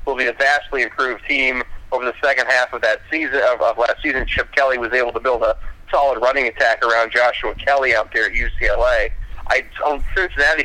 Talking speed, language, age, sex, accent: 195 wpm, English, 40-59, male, American